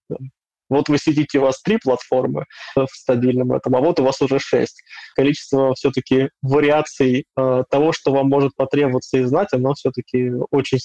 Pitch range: 125-145 Hz